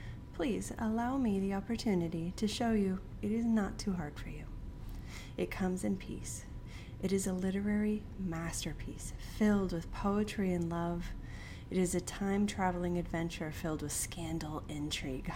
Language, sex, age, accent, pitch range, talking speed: English, female, 30-49, American, 165-205 Hz, 150 wpm